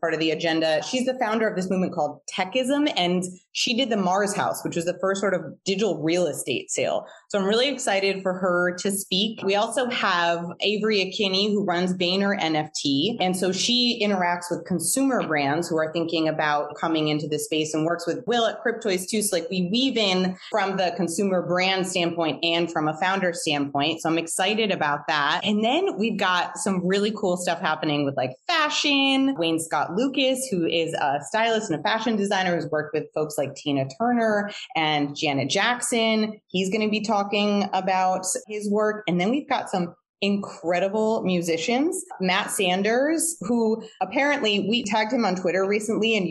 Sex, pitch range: female, 170-225 Hz